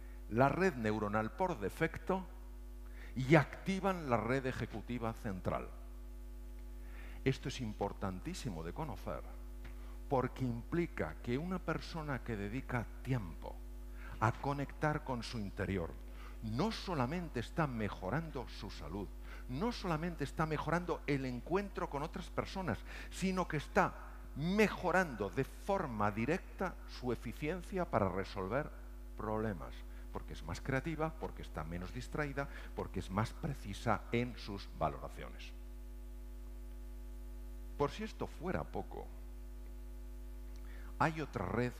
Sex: male